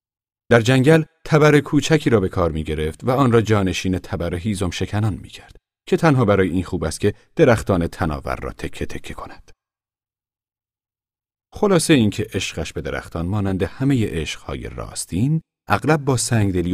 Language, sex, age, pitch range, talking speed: Persian, male, 40-59, 85-130 Hz, 145 wpm